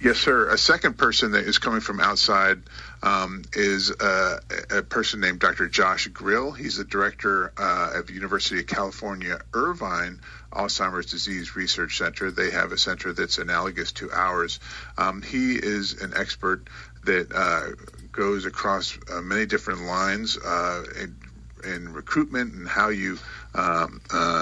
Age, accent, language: 40-59, American, English